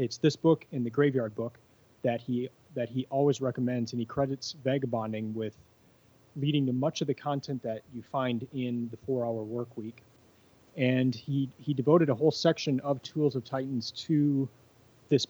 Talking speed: 175 wpm